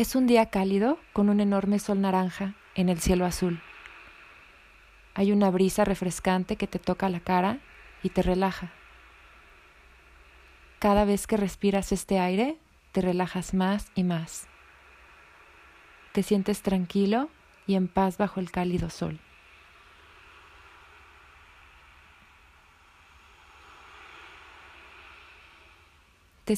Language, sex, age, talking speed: Spanish, female, 30-49, 105 wpm